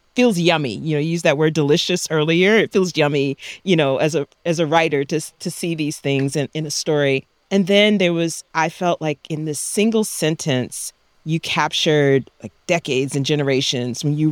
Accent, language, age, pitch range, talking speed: American, English, 40-59, 150-195 Hz, 200 wpm